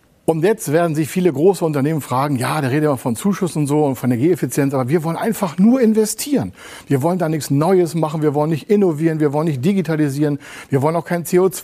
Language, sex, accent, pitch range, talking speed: German, male, German, 125-160 Hz, 225 wpm